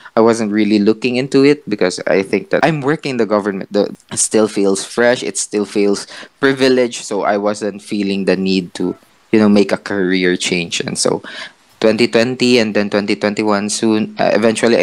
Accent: Filipino